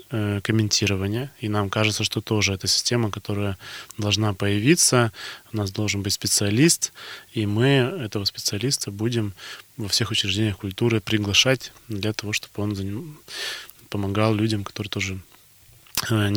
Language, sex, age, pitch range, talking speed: Russian, male, 20-39, 100-115 Hz, 130 wpm